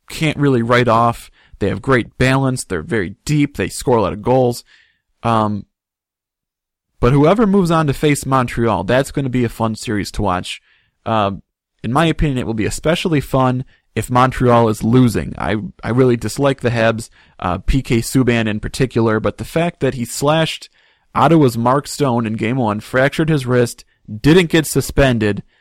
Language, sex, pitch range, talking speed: English, male, 110-140 Hz, 180 wpm